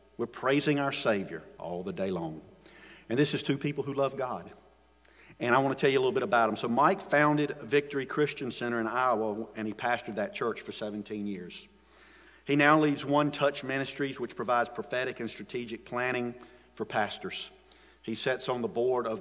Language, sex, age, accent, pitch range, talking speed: English, male, 50-69, American, 110-135 Hz, 195 wpm